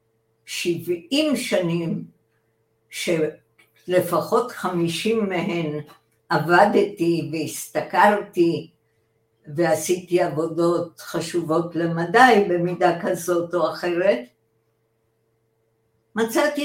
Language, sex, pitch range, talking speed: Hebrew, female, 150-200 Hz, 60 wpm